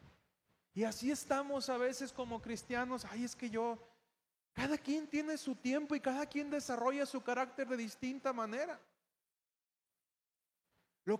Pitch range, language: 205-260 Hz, Spanish